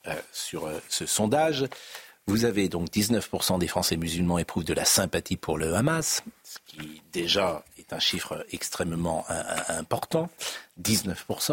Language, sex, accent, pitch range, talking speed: French, male, French, 100-160 Hz, 145 wpm